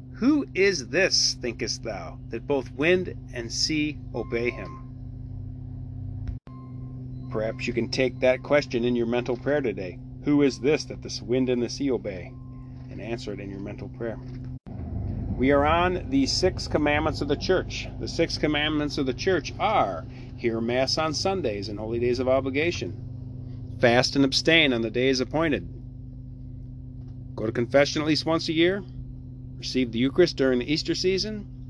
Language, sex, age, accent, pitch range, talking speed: English, male, 40-59, American, 120-140 Hz, 165 wpm